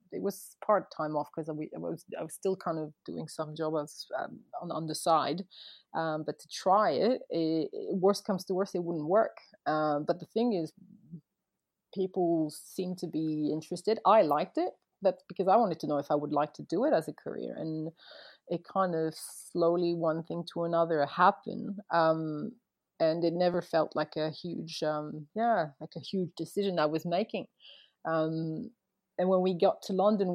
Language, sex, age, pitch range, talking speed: English, female, 30-49, 160-190 Hz, 200 wpm